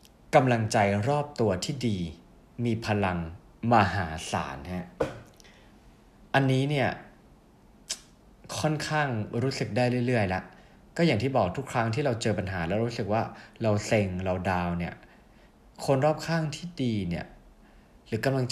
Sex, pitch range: male, 100-140 Hz